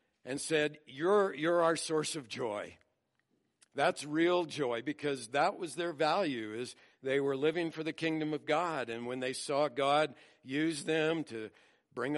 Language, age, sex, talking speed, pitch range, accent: English, 60-79, male, 170 wpm, 115-150 Hz, American